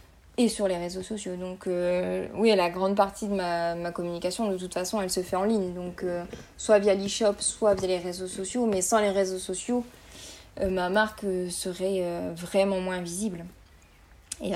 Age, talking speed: 20-39, 195 wpm